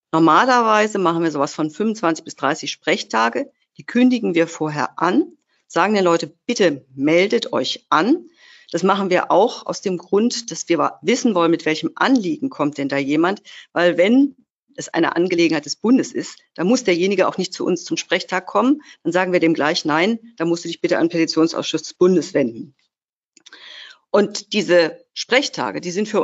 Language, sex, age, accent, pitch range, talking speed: German, female, 50-69, German, 165-225 Hz, 180 wpm